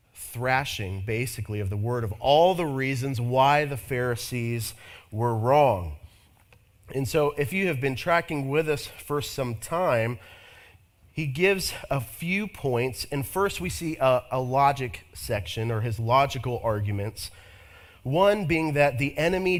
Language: English